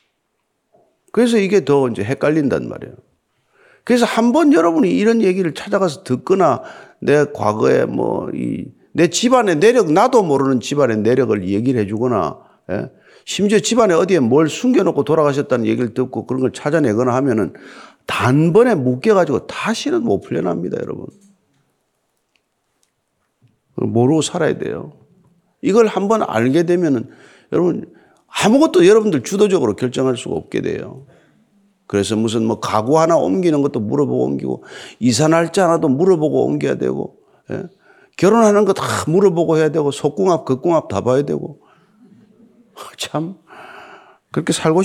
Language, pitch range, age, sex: Korean, 130-210 Hz, 50-69, male